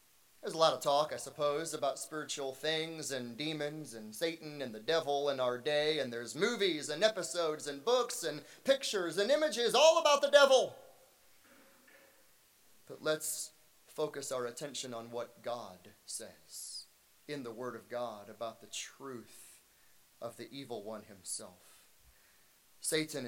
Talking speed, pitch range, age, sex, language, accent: 150 wpm, 140-215 Hz, 30-49, male, English, American